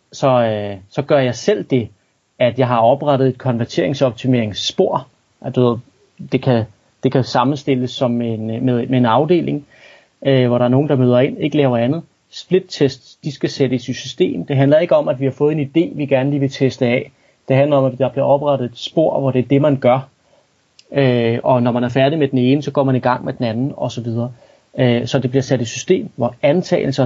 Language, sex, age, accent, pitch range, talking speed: Danish, male, 30-49, native, 125-145 Hz, 220 wpm